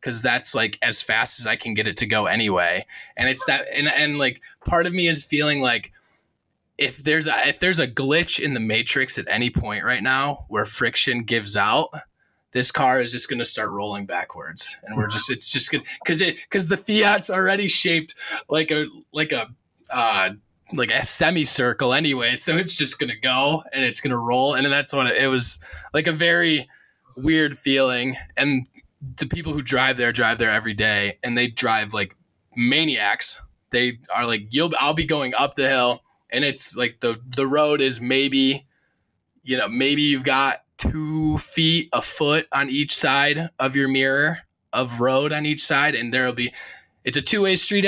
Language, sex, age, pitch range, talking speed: English, male, 20-39, 125-150 Hz, 195 wpm